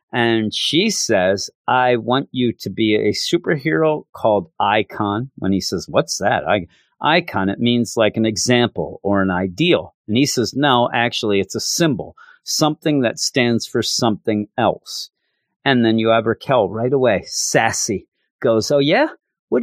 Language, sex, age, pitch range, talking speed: English, male, 40-59, 115-180 Hz, 160 wpm